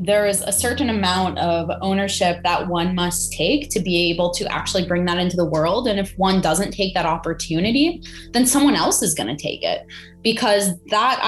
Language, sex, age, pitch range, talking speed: English, female, 20-39, 165-215 Hz, 195 wpm